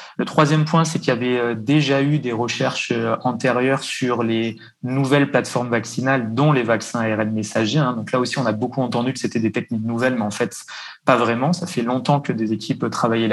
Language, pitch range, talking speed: French, 115-140 Hz, 205 wpm